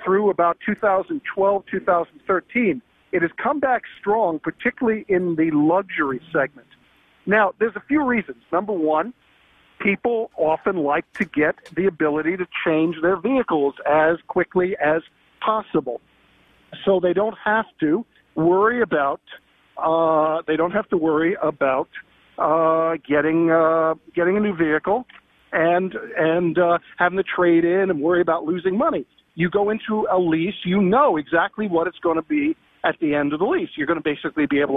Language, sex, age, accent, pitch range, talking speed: English, male, 50-69, American, 160-205 Hz, 160 wpm